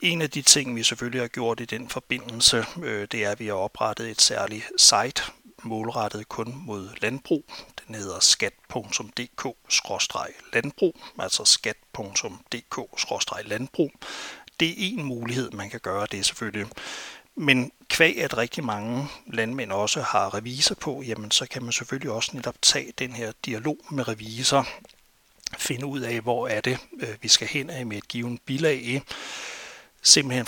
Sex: male